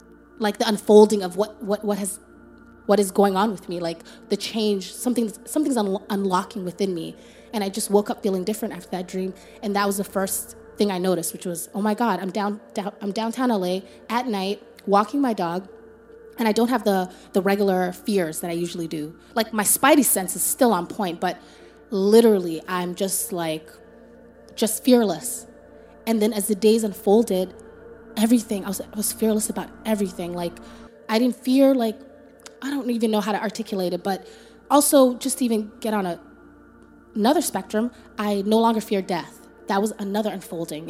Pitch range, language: 195-230 Hz, English